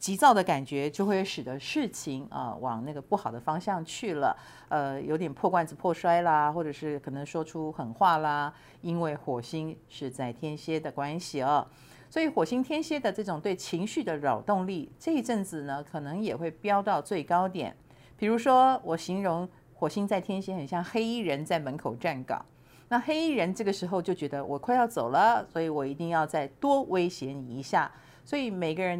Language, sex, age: Chinese, female, 50-69